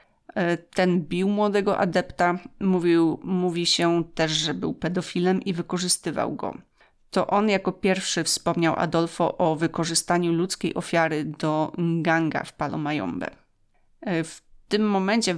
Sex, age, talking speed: female, 30-49, 120 wpm